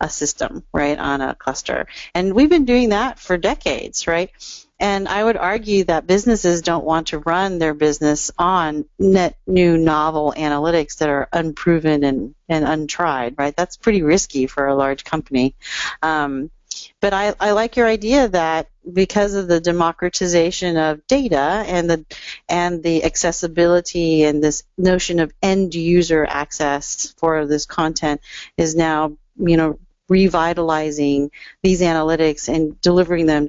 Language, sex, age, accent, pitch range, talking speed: English, female, 40-59, American, 150-185 Hz, 150 wpm